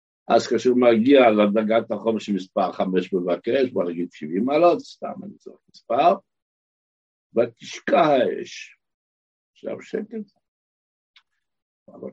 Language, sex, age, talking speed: Hebrew, male, 60-79, 110 wpm